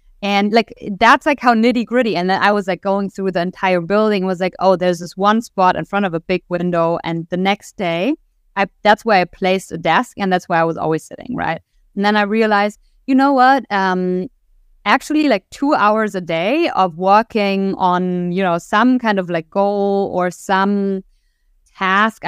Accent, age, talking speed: German, 20-39, 205 wpm